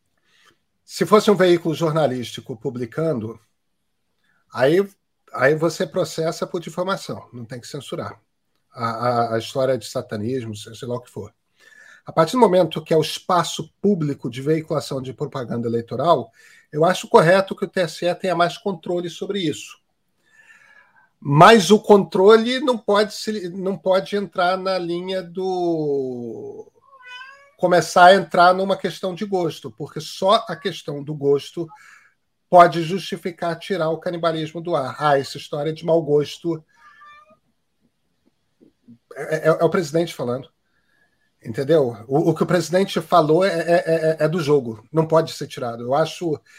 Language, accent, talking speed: Portuguese, Brazilian, 145 wpm